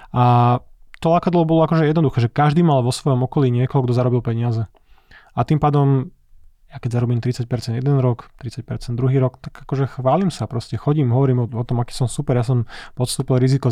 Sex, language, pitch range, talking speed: male, Slovak, 120-135 Hz, 195 wpm